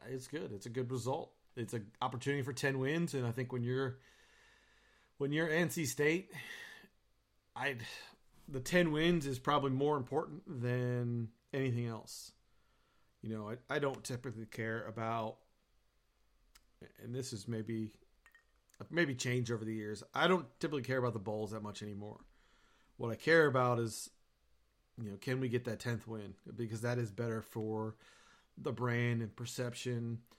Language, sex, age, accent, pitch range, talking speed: English, male, 40-59, American, 115-135 Hz, 160 wpm